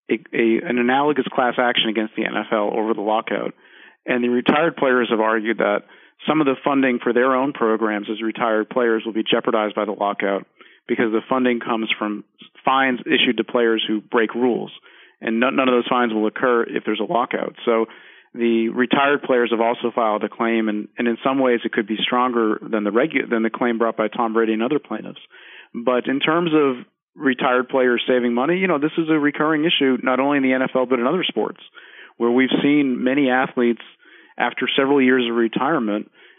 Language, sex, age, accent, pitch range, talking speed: English, male, 40-59, American, 115-130 Hz, 200 wpm